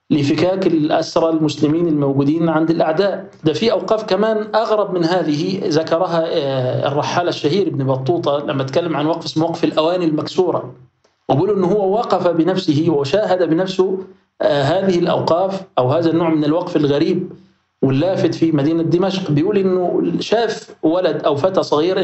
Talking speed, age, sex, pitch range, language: 140 wpm, 40-59, male, 155-190 Hz, Arabic